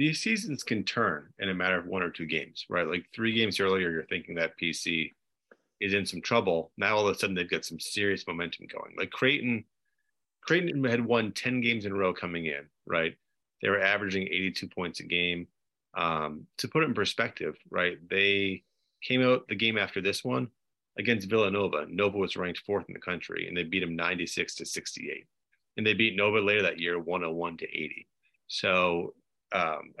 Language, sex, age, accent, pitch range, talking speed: English, male, 30-49, American, 85-115 Hz, 200 wpm